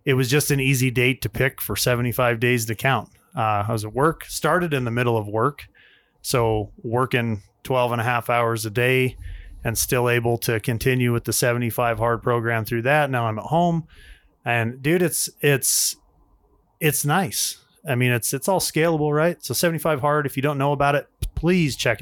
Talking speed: 200 wpm